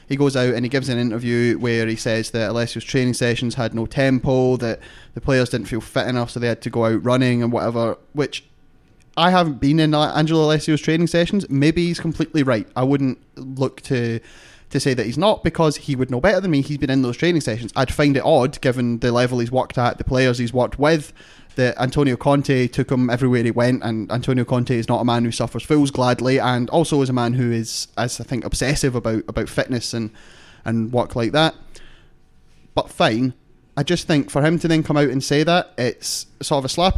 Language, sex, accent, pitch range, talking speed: English, male, British, 120-150 Hz, 230 wpm